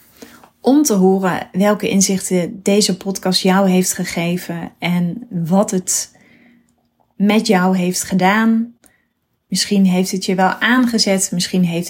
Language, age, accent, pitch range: Dutch, 20-39, Dutch, 175-210 Hz